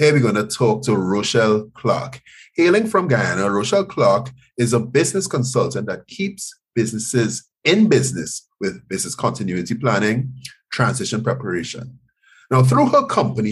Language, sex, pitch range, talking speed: English, male, 110-140 Hz, 140 wpm